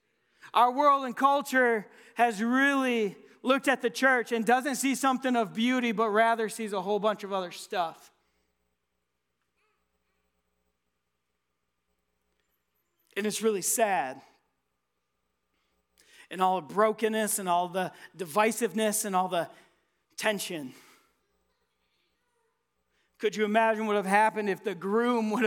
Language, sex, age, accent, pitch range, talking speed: English, male, 40-59, American, 170-230 Hz, 125 wpm